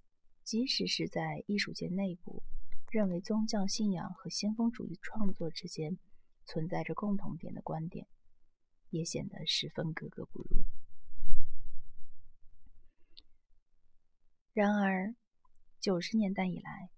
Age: 30-49